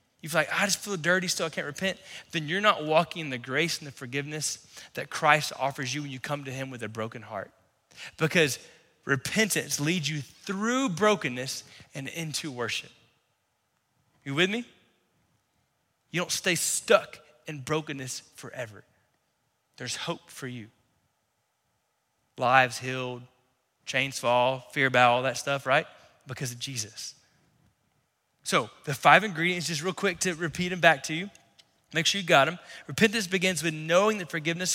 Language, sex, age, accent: English, male, 20-39, American